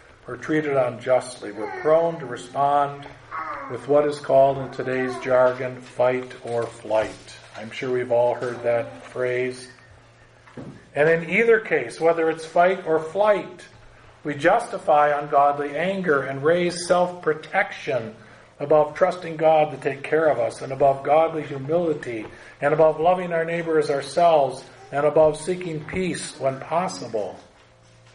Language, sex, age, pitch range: English, male, 50-69, 125-155 Hz